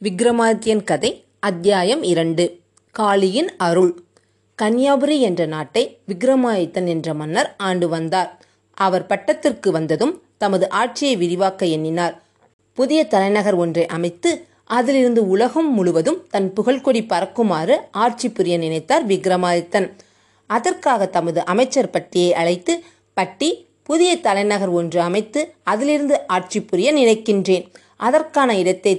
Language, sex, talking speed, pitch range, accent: Tamil, female, 110 wpm, 180-240 Hz, native